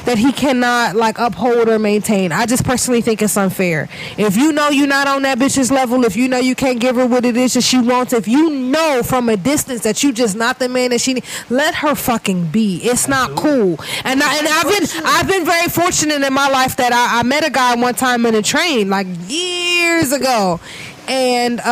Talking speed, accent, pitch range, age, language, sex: 230 wpm, American, 220-260 Hz, 20-39, English, female